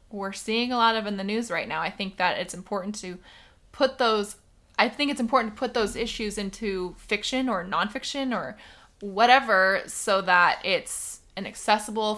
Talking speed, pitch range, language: 180 wpm, 195-235 Hz, English